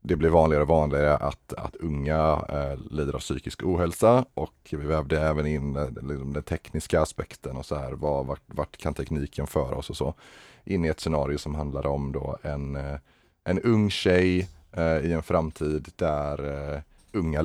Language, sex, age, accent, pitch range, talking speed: Swedish, male, 30-49, native, 75-85 Hz, 185 wpm